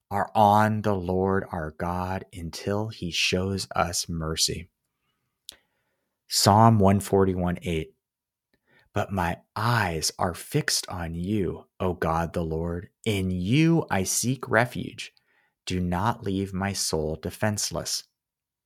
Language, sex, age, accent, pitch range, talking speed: English, male, 30-49, American, 90-120 Hz, 115 wpm